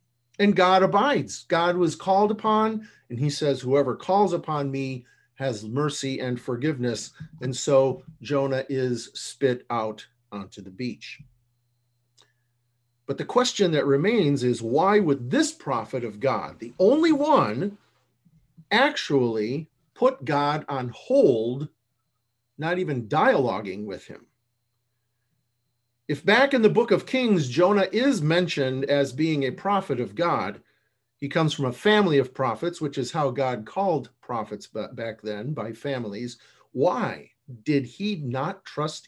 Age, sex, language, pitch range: 50-69, male, English, 120-175 Hz